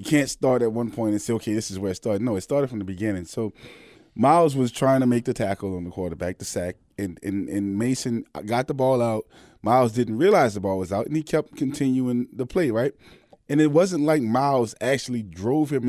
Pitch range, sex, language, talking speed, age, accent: 115-140 Hz, male, English, 240 wpm, 20-39, American